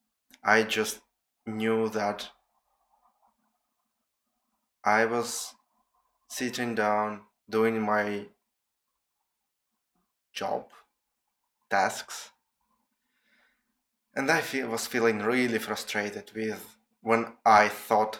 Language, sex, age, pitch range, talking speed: English, male, 20-39, 105-135 Hz, 75 wpm